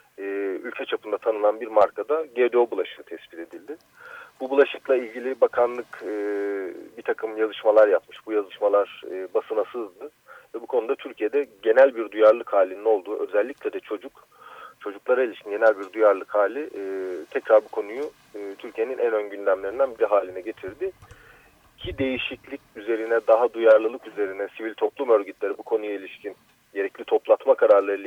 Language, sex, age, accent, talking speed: Turkish, male, 40-59, native, 135 wpm